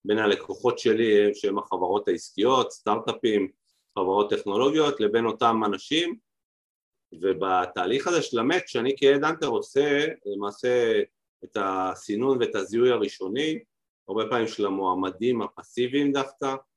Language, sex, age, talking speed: Hebrew, male, 40-59, 115 wpm